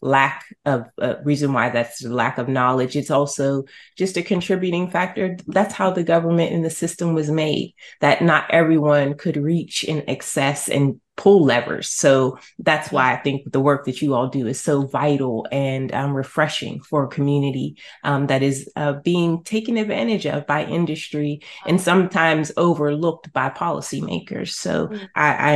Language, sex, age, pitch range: English, female, 30-49, 140-170 Hz